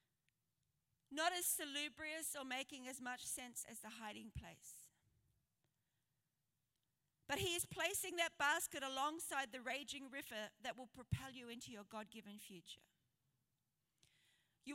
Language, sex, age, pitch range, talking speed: English, female, 40-59, 215-295 Hz, 125 wpm